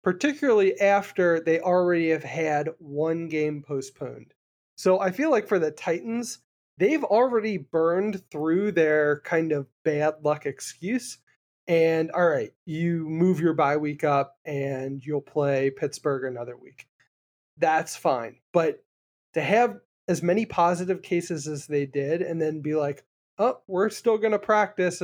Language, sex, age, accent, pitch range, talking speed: English, male, 20-39, American, 150-185 Hz, 150 wpm